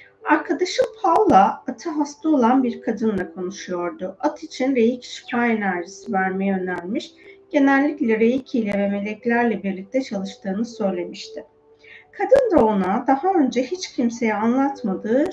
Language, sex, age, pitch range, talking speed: Turkish, female, 40-59, 195-285 Hz, 120 wpm